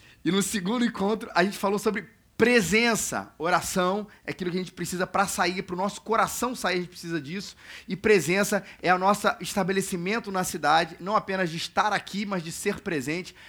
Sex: male